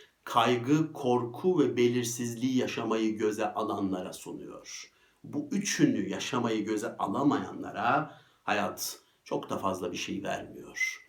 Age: 60-79